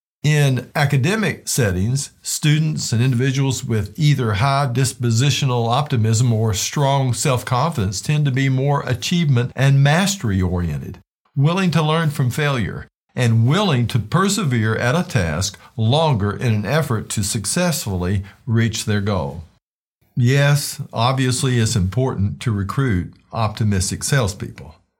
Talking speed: 120 wpm